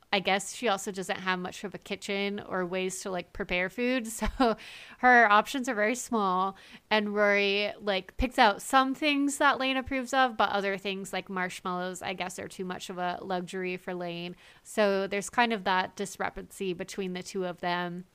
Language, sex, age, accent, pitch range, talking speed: English, female, 20-39, American, 185-220 Hz, 195 wpm